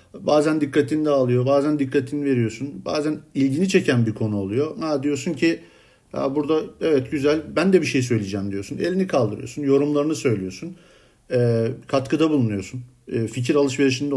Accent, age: native, 50-69